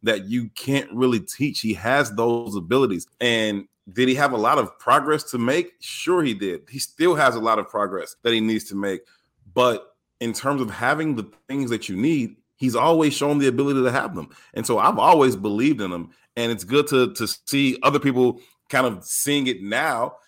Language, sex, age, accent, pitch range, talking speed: English, male, 30-49, American, 110-130 Hz, 215 wpm